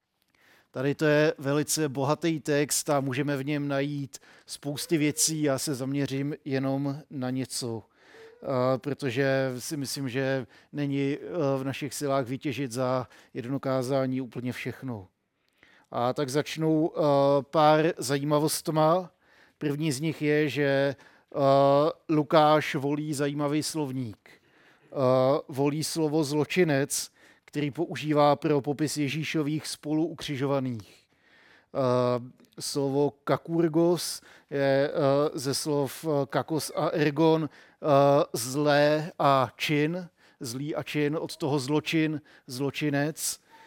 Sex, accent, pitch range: male, native, 140-155 Hz